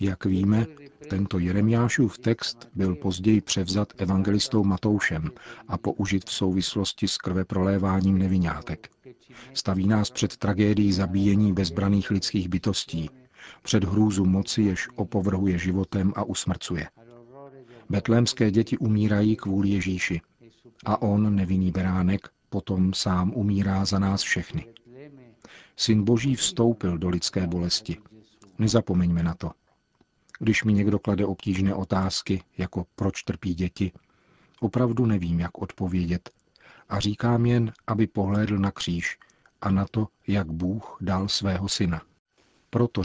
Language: Czech